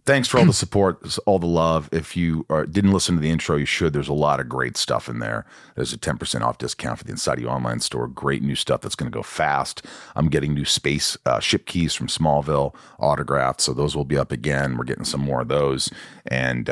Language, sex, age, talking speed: English, male, 40-59, 240 wpm